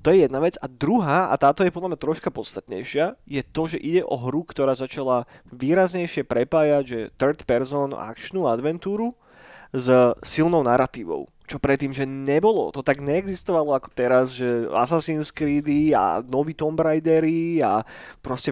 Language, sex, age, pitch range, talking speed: Slovak, male, 20-39, 130-165 Hz, 160 wpm